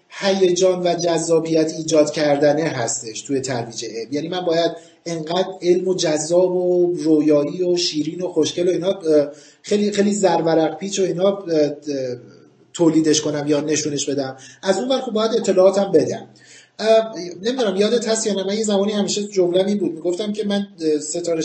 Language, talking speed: Persian, 155 wpm